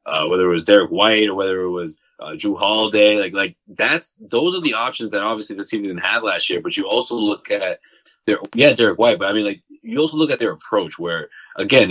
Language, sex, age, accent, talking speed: English, male, 20-39, American, 245 wpm